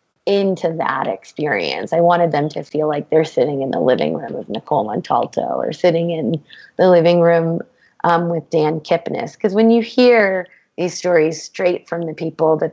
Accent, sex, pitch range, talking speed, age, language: American, female, 165-205 Hz, 185 wpm, 20-39, English